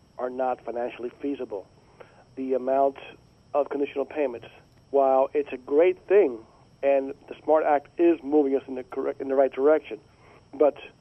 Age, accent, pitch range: 50-69, American, 130-145 Hz